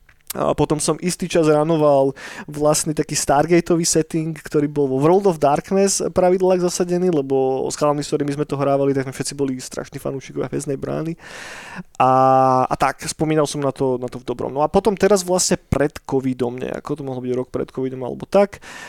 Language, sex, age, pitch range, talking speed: Slovak, male, 20-39, 140-165 Hz, 195 wpm